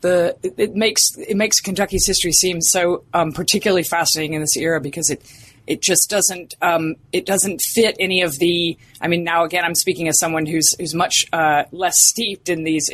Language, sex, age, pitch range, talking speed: English, female, 30-49, 160-205 Hz, 200 wpm